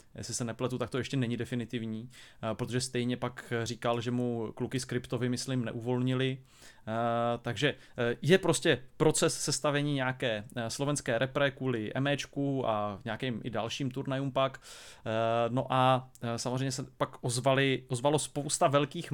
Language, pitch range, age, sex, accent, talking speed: Czech, 120-140 Hz, 30-49, male, native, 135 wpm